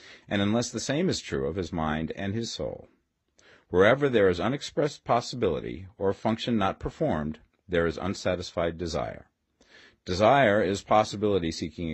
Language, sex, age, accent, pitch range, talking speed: English, male, 50-69, American, 80-110 Hz, 145 wpm